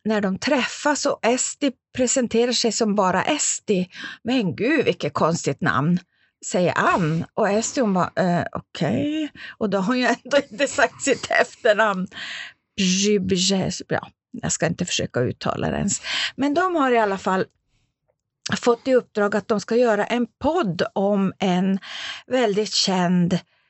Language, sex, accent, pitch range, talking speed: Swedish, female, native, 175-240 Hz, 150 wpm